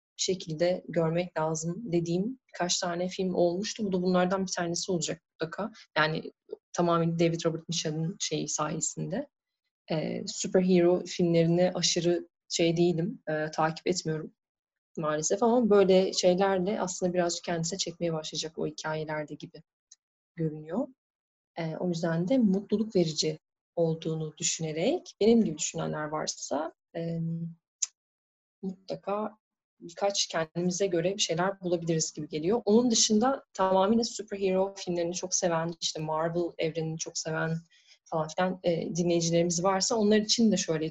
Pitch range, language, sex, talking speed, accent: 165-200 Hz, Turkish, female, 130 wpm, native